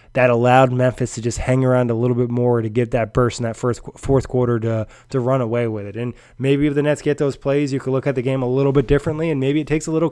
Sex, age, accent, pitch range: male, 20-39, American, 120-135 Hz